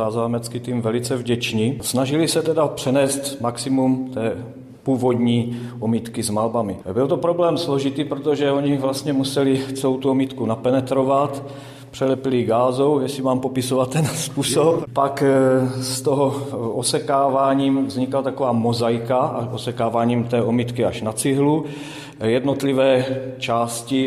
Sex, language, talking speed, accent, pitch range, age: male, Czech, 120 wpm, native, 115-135 Hz, 40-59